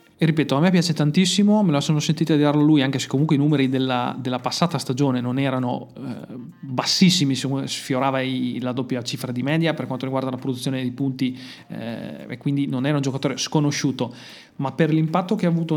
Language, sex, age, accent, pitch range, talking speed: Italian, male, 30-49, native, 130-160 Hz, 210 wpm